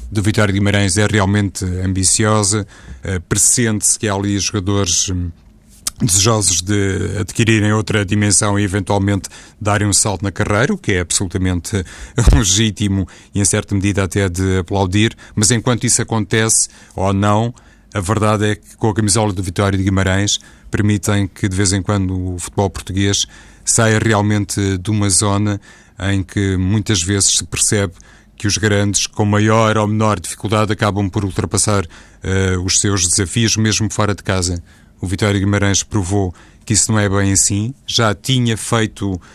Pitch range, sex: 95-110 Hz, male